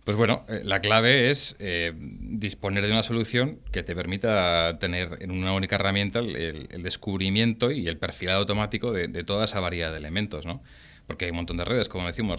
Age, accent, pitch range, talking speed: 30-49, Spanish, 90-110 Hz, 200 wpm